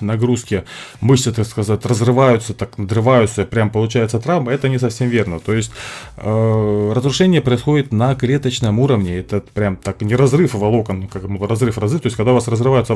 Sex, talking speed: male, 175 wpm